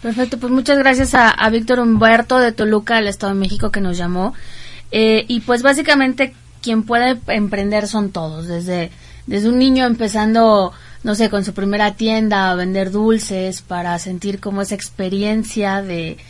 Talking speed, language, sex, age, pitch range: 170 wpm, Spanish, female, 20-39, 195-230 Hz